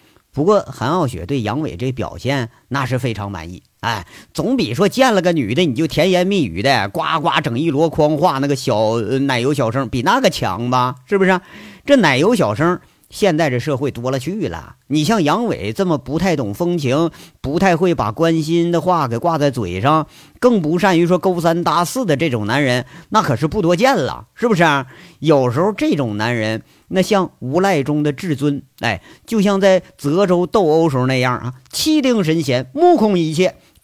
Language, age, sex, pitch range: Chinese, 50-69, male, 125-185 Hz